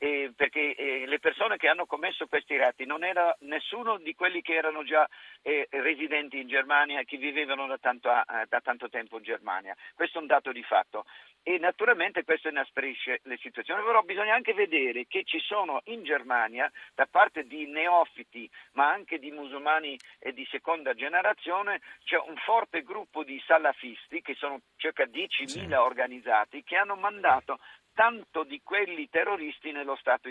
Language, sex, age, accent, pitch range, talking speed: Italian, male, 50-69, native, 145-225 Hz, 170 wpm